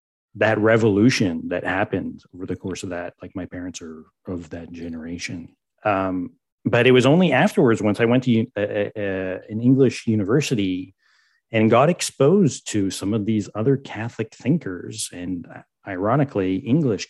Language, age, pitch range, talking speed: English, 30-49, 90-120 Hz, 160 wpm